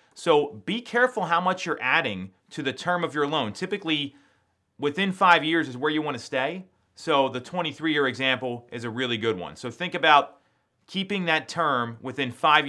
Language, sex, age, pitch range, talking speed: English, male, 30-49, 130-175 Hz, 190 wpm